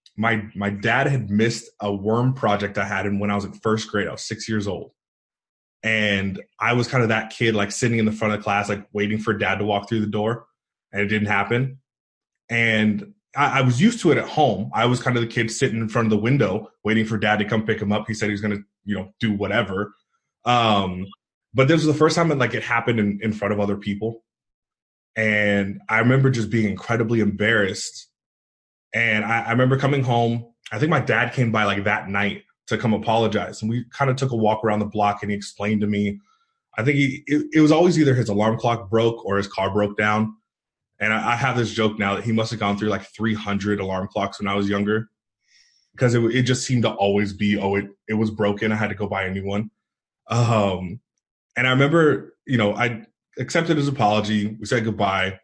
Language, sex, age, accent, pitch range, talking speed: English, male, 20-39, American, 105-120 Hz, 235 wpm